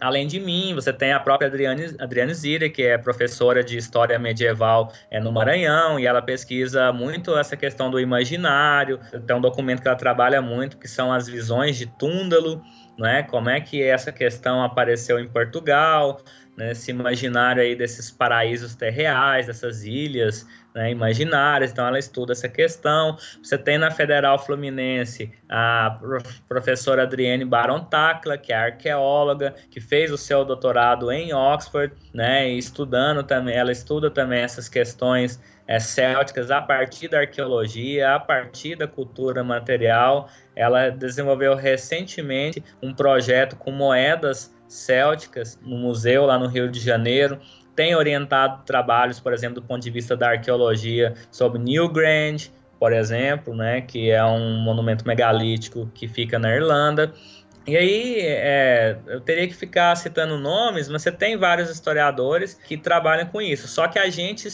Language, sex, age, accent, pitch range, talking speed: Portuguese, male, 20-39, Brazilian, 120-150 Hz, 150 wpm